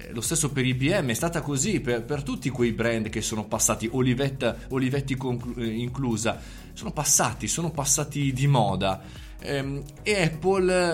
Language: Italian